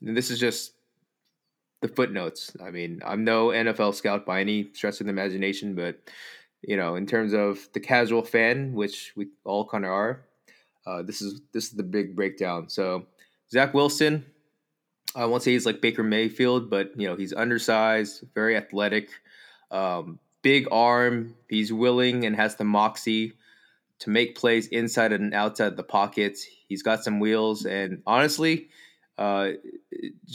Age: 20-39